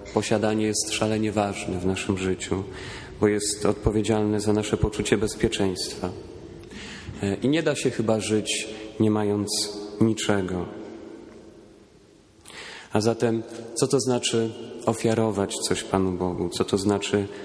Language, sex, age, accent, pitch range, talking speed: Polish, male, 40-59, native, 100-110 Hz, 120 wpm